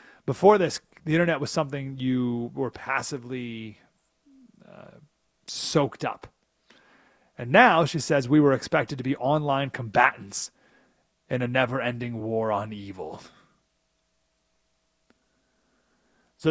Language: English